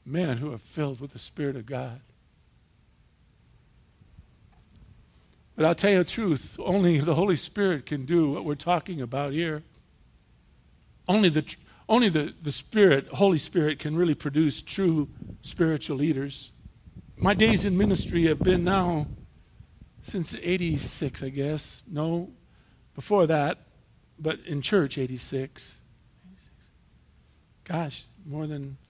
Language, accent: English, American